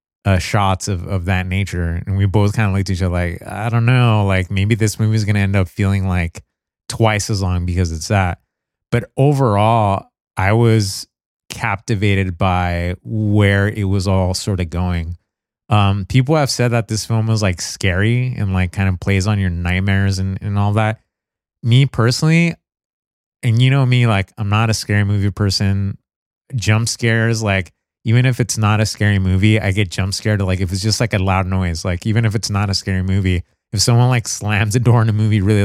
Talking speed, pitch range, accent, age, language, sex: 210 wpm, 95-115 Hz, American, 30-49, English, male